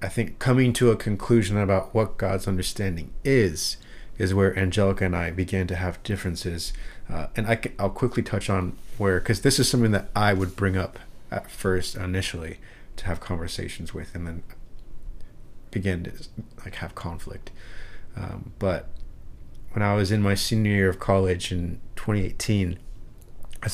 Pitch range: 90-110 Hz